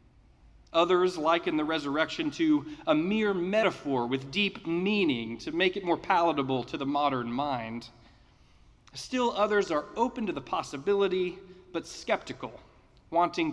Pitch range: 135-220 Hz